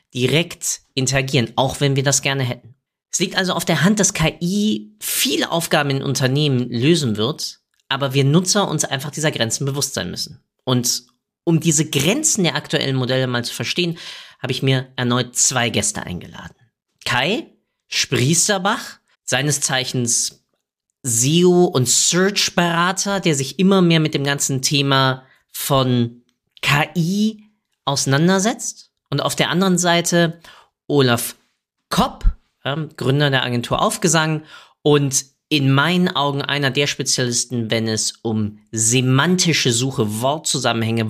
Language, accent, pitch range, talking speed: German, German, 120-165 Hz, 135 wpm